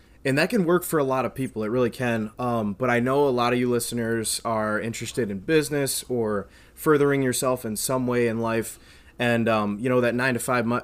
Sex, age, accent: male, 20-39, American